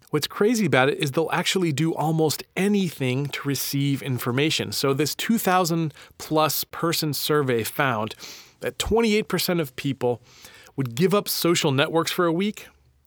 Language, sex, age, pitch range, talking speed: English, male, 30-49, 130-170 Hz, 145 wpm